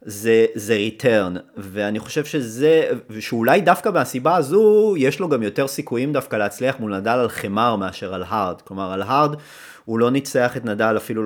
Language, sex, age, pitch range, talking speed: Hebrew, male, 30-49, 105-145 Hz, 175 wpm